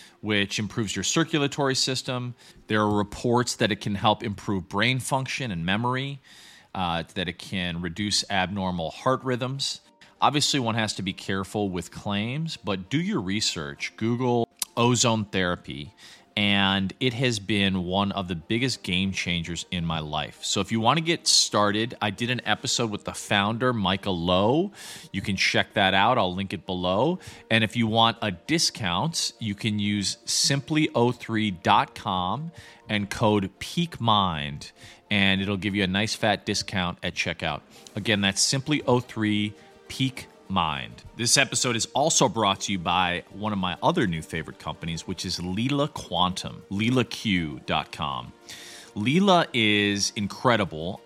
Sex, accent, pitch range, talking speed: male, American, 95-115 Hz, 150 wpm